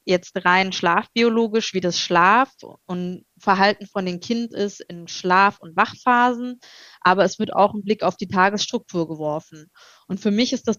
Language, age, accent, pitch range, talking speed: German, 20-39, German, 180-205 Hz, 170 wpm